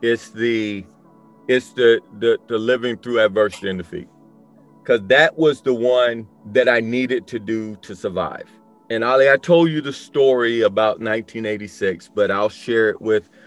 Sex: male